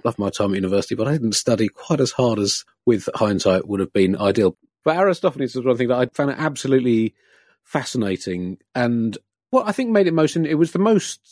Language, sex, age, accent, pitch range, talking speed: English, male, 40-59, British, 95-135 Hz, 205 wpm